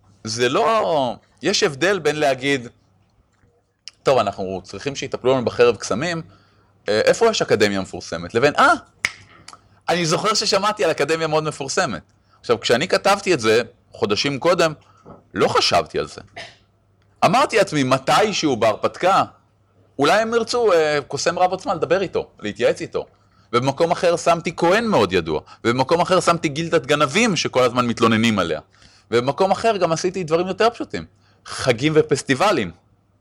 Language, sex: Hebrew, male